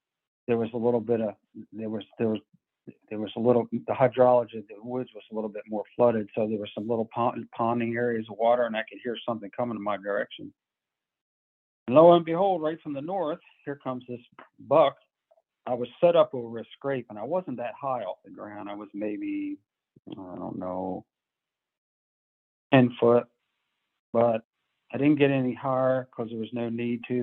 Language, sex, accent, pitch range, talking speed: English, male, American, 105-125 Hz, 200 wpm